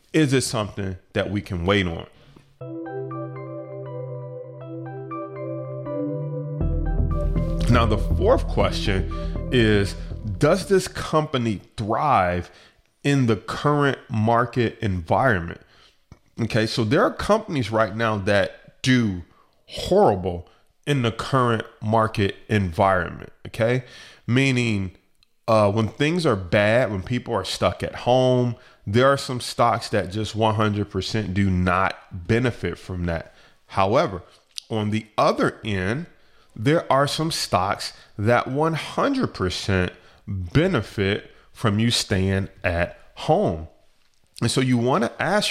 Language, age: English, 20-39